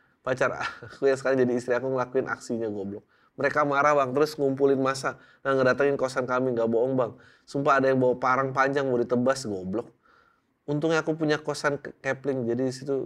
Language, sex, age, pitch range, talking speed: Indonesian, male, 20-39, 125-155 Hz, 180 wpm